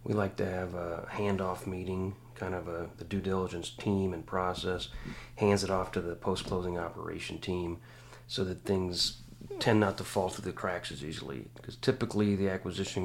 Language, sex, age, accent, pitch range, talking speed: English, male, 40-59, American, 95-115 Hz, 185 wpm